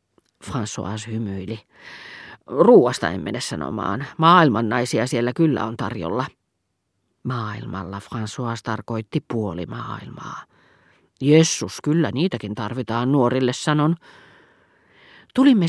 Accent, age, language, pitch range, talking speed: native, 40-59, Finnish, 115-155 Hz, 90 wpm